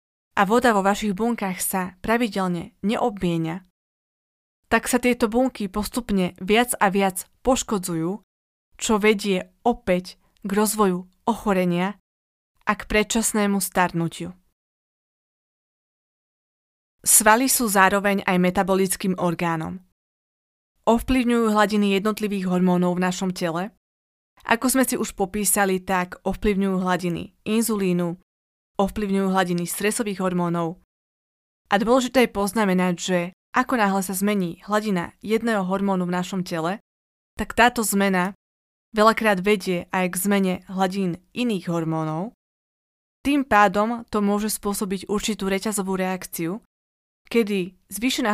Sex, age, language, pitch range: female, 20-39, Slovak, 180-215 Hz